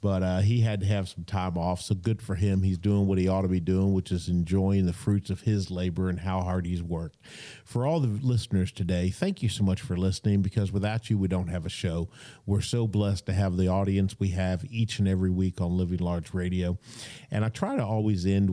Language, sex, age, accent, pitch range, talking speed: English, male, 40-59, American, 95-115 Hz, 245 wpm